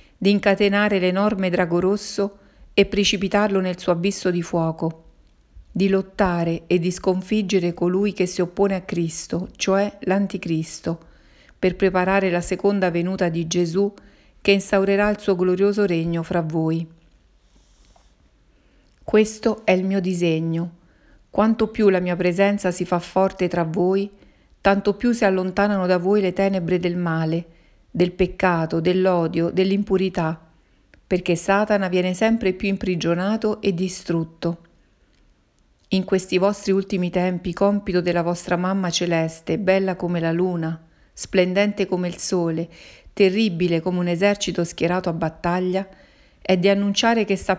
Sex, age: female, 50-69